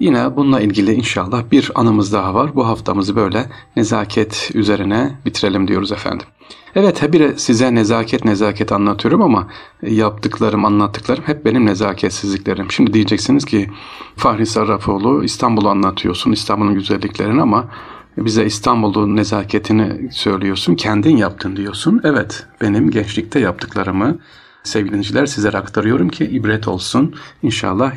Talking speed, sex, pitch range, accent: 120 wpm, male, 100-115 Hz, native